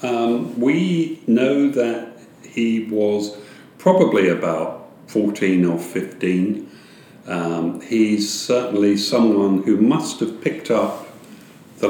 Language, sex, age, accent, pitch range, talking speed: English, male, 50-69, British, 90-105 Hz, 105 wpm